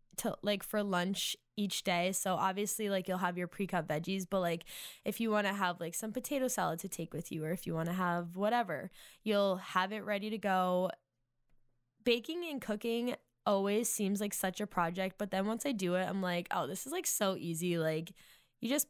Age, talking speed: 10-29, 215 wpm